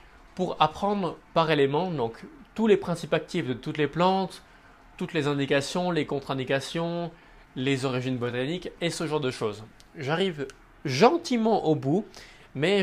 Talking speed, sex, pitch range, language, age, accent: 145 wpm, male, 140-175 Hz, French, 20-39, French